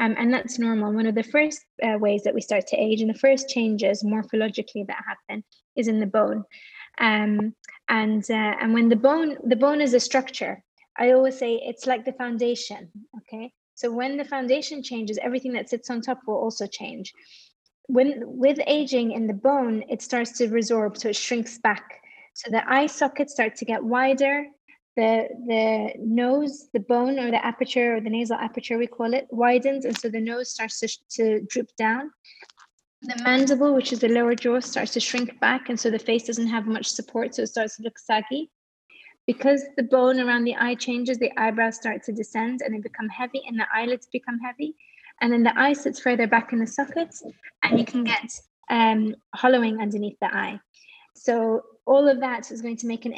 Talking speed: 205 wpm